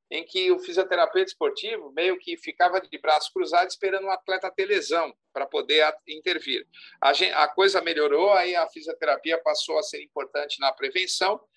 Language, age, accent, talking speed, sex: Portuguese, 50-69, Brazilian, 175 wpm, male